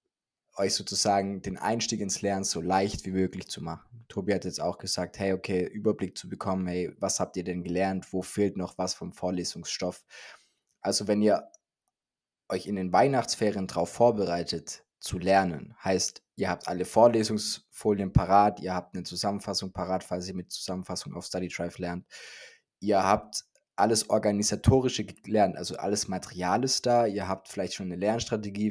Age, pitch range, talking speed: 20-39, 90-105 Hz, 165 wpm